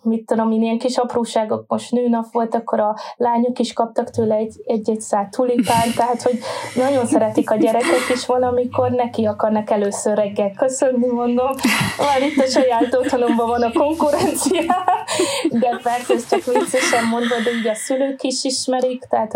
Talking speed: 160 wpm